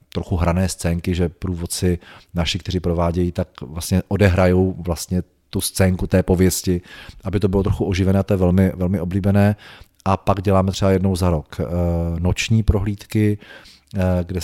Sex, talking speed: male, 155 wpm